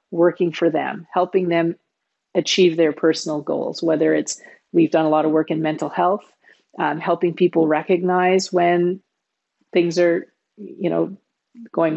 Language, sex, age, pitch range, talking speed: English, female, 40-59, 170-205 Hz, 150 wpm